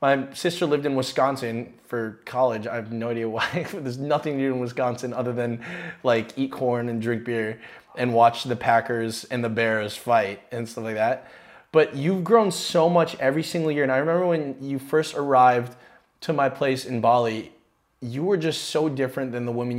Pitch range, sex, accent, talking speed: 125-155 Hz, male, American, 200 wpm